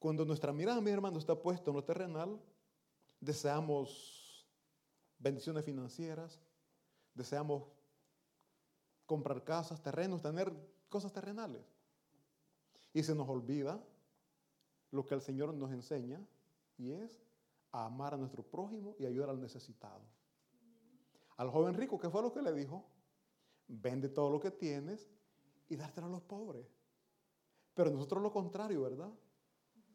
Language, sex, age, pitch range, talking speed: Italian, male, 30-49, 145-195 Hz, 130 wpm